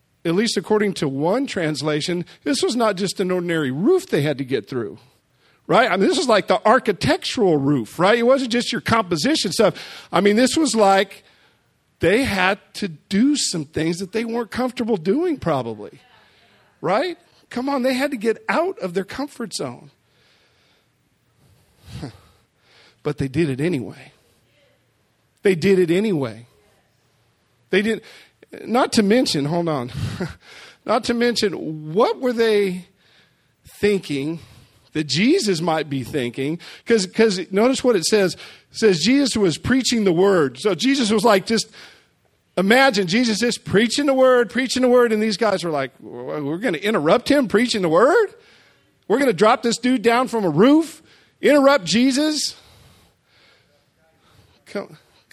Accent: American